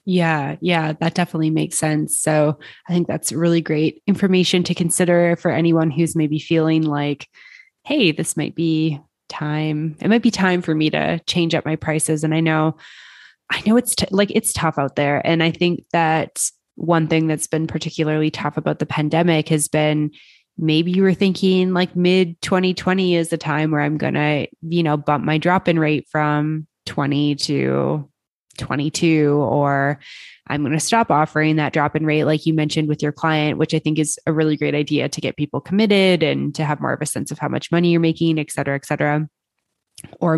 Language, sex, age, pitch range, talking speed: English, female, 20-39, 150-165 Hz, 195 wpm